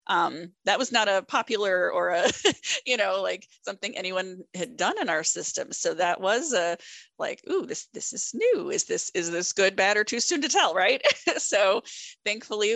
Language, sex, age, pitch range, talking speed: English, female, 30-49, 175-240 Hz, 200 wpm